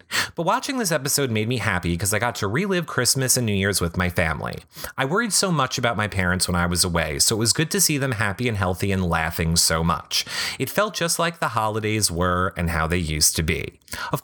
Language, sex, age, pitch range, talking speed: English, male, 30-49, 90-145 Hz, 245 wpm